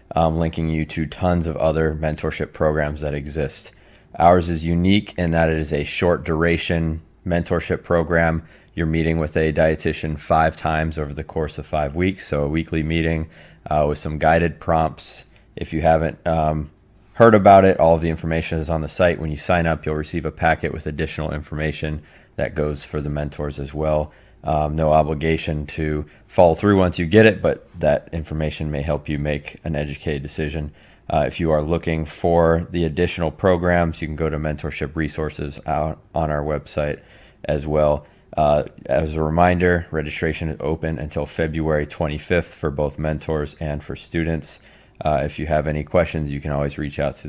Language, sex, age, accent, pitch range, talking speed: English, male, 30-49, American, 75-85 Hz, 185 wpm